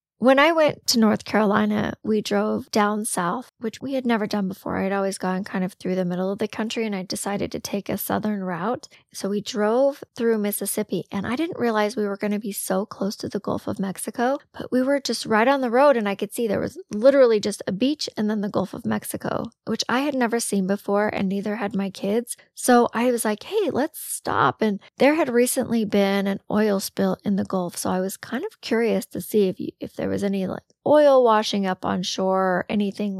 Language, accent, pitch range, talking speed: English, American, 200-240 Hz, 235 wpm